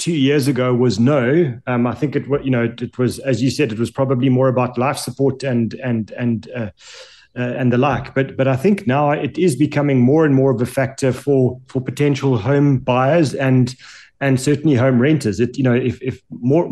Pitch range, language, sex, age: 125-140 Hz, English, male, 30-49